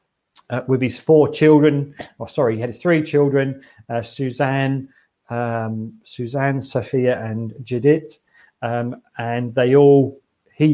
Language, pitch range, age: English, 120-140 Hz, 40-59